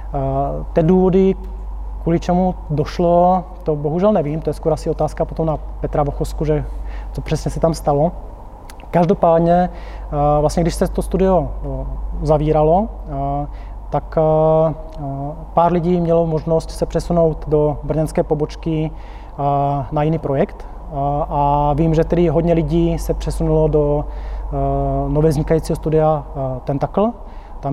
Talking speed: 125 wpm